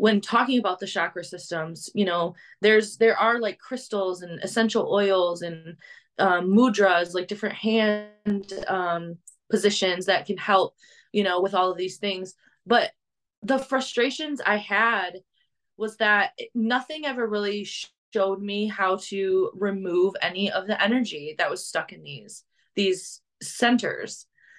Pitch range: 195-240 Hz